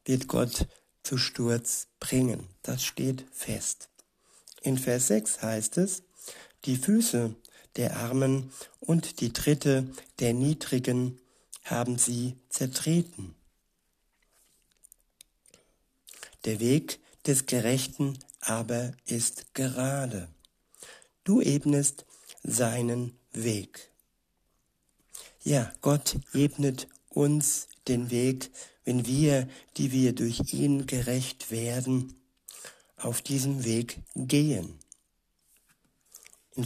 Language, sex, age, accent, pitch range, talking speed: German, male, 60-79, German, 120-140 Hz, 90 wpm